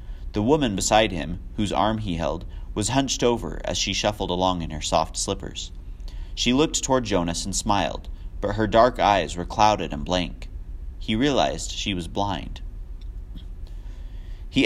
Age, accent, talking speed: 30-49, American, 160 wpm